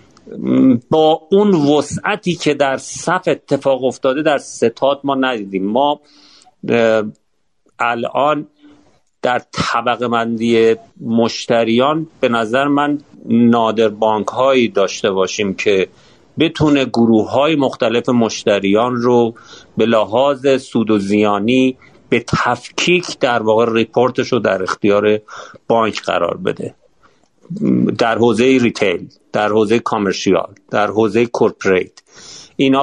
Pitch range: 115-140 Hz